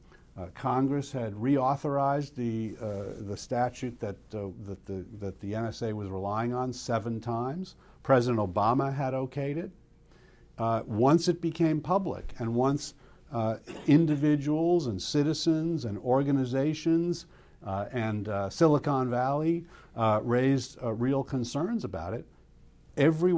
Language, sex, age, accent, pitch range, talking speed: English, male, 50-69, American, 115-145 Hz, 130 wpm